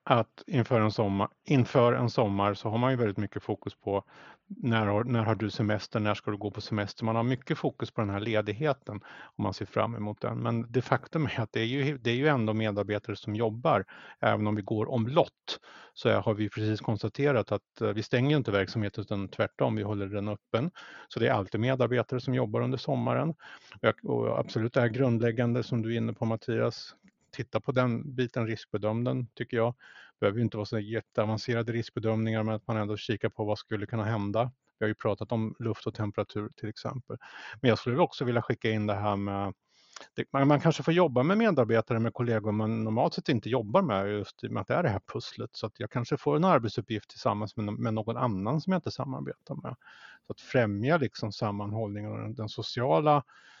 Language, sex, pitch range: Swedish, male, 105-125 Hz